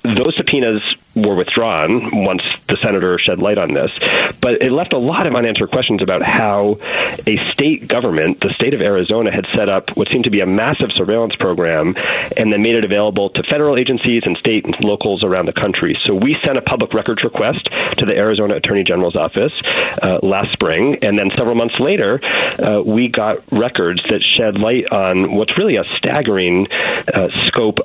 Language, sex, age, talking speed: English, male, 40-59, 190 wpm